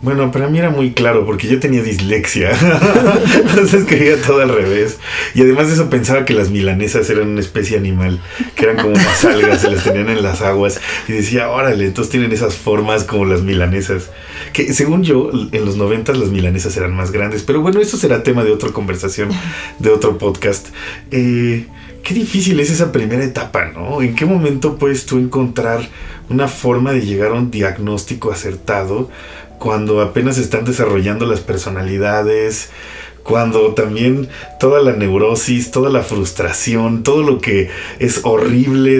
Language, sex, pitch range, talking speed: Spanish, male, 105-135 Hz, 170 wpm